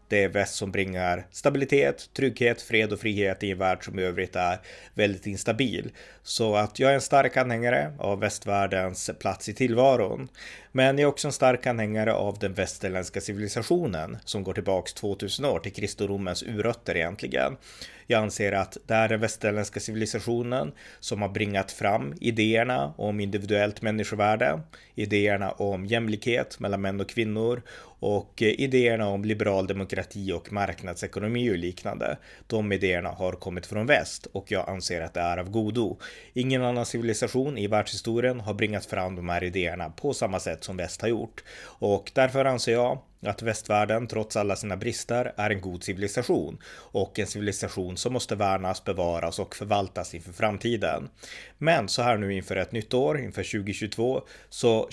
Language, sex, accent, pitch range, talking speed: Swedish, male, native, 95-115 Hz, 165 wpm